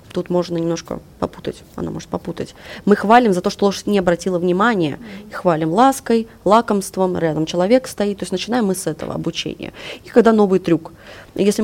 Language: Russian